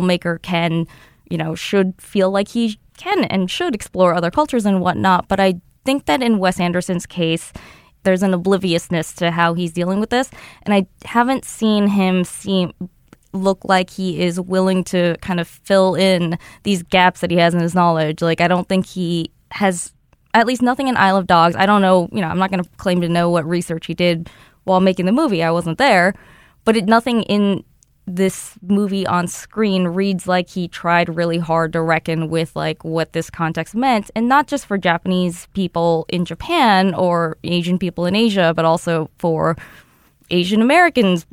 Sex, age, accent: female, 20-39, American